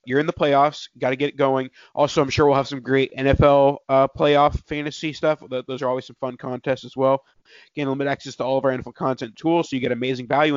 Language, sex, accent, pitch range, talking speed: English, male, American, 130-145 Hz, 250 wpm